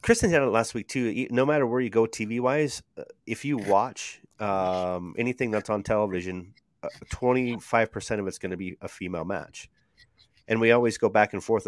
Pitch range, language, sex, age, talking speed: 100-120 Hz, English, male, 30-49, 200 wpm